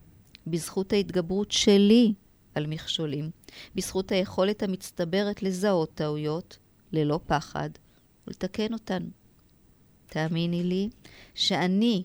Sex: female